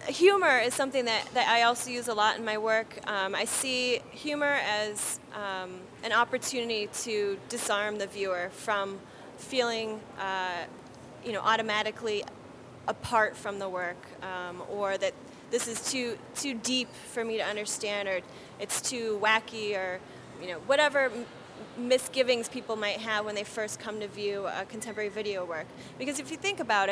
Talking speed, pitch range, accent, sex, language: 165 wpm, 200-240 Hz, American, female, English